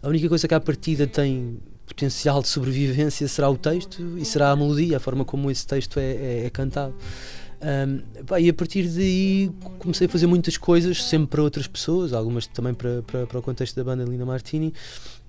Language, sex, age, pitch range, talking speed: Portuguese, male, 20-39, 135-155 Hz, 205 wpm